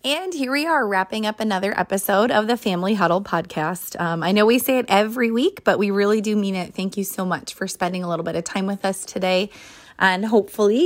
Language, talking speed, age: English, 240 wpm, 20-39